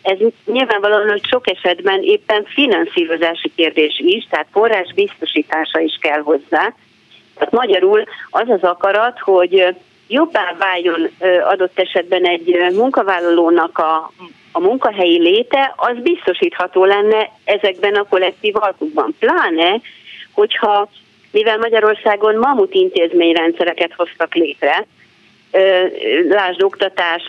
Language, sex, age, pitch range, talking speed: Hungarian, female, 40-59, 175-245 Hz, 105 wpm